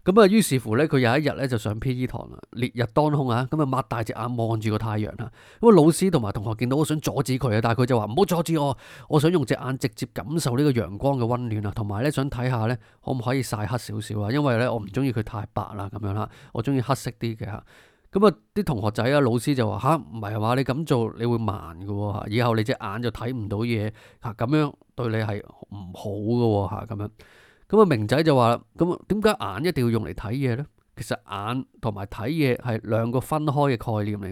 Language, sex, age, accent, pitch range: Chinese, male, 20-39, native, 110-140 Hz